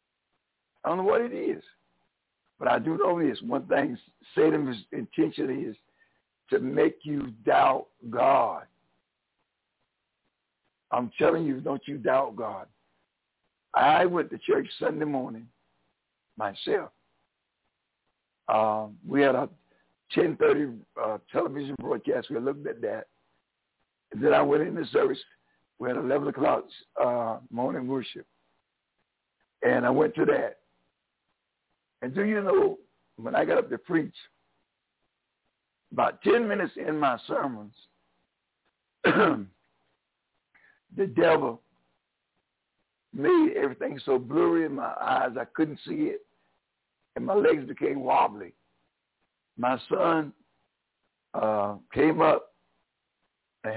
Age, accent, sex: 60-79, American, male